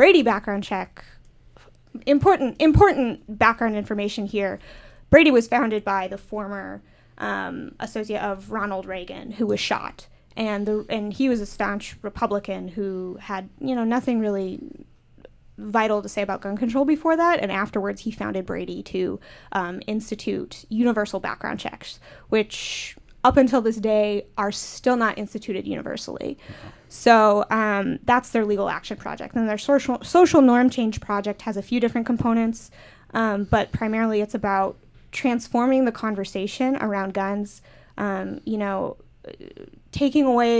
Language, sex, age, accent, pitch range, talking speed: English, female, 10-29, American, 200-240 Hz, 145 wpm